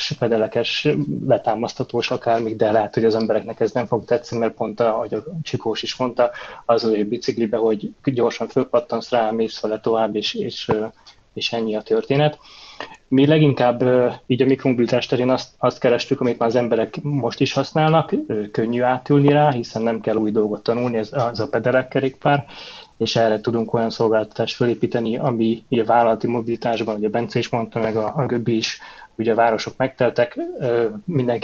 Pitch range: 115-130 Hz